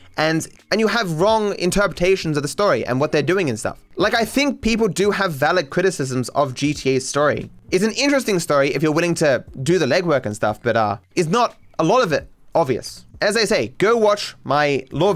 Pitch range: 130-200 Hz